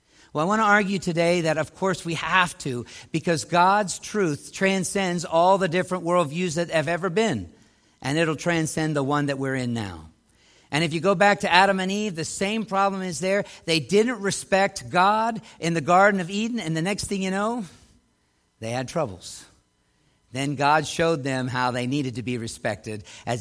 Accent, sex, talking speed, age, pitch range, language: American, male, 195 wpm, 50-69, 145-200 Hz, English